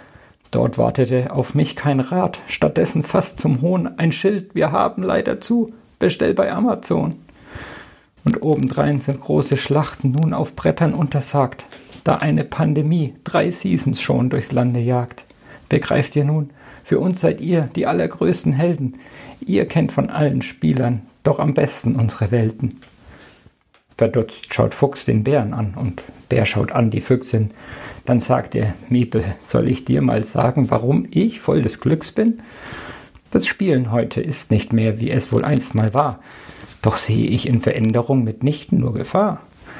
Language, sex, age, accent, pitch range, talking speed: German, male, 50-69, German, 115-150 Hz, 160 wpm